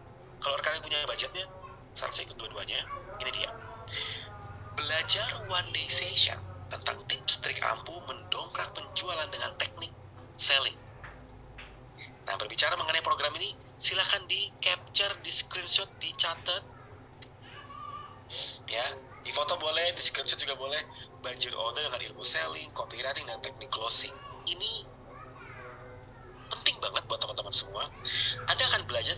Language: Indonesian